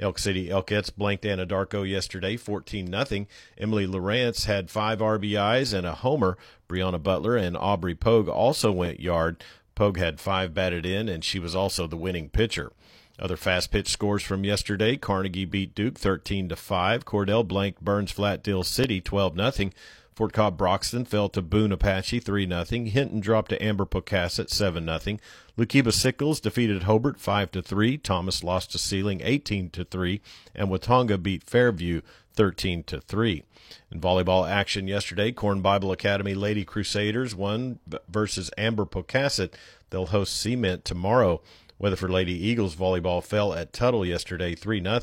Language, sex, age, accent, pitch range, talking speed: English, male, 50-69, American, 90-110 Hz, 155 wpm